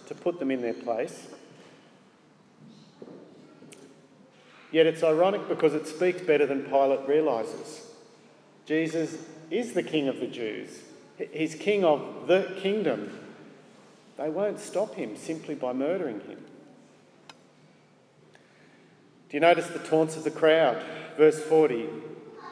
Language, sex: English, male